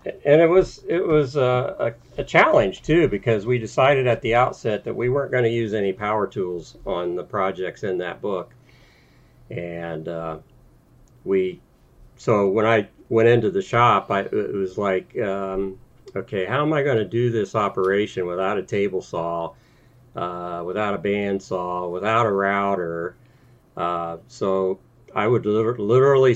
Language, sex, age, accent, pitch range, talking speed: English, male, 50-69, American, 95-120 Hz, 160 wpm